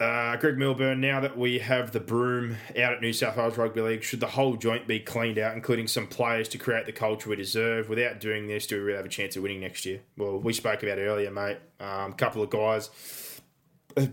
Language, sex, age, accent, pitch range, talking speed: English, male, 20-39, Australian, 105-120 Hz, 245 wpm